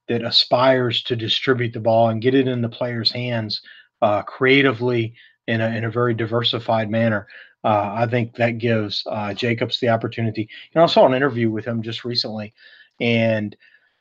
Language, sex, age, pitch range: English, male, 30-49, 110-125 Hz